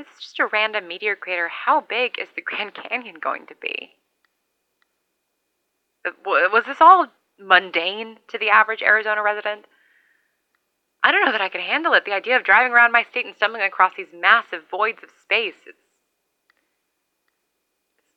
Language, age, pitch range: English, 20-39, 185-240 Hz